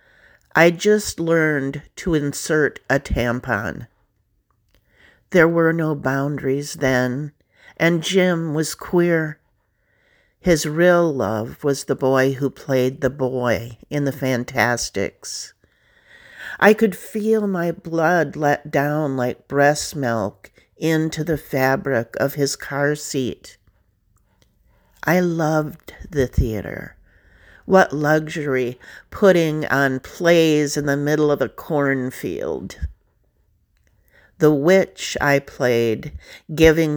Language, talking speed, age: English, 105 wpm, 50-69